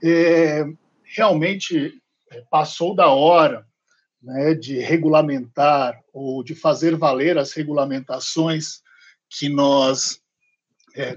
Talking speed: 90 wpm